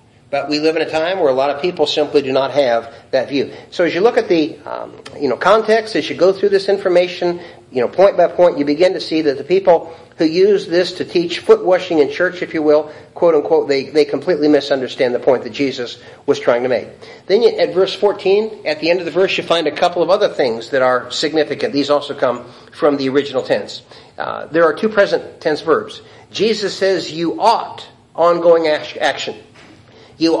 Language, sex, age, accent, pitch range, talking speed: English, male, 50-69, American, 135-185 Hz, 225 wpm